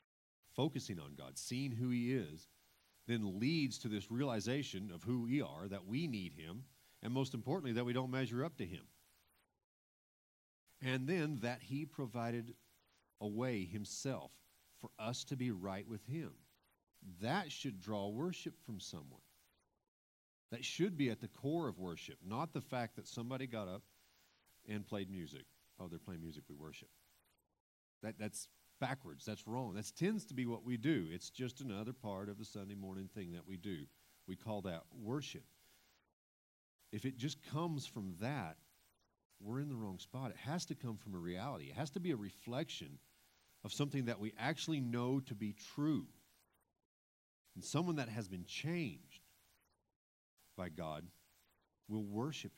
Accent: American